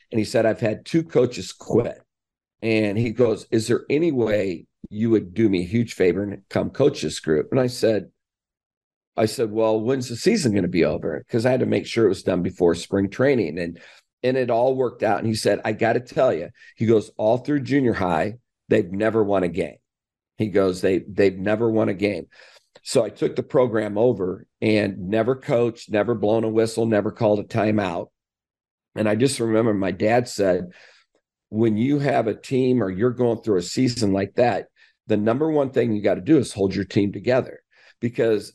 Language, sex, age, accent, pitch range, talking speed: English, male, 50-69, American, 100-120 Hz, 210 wpm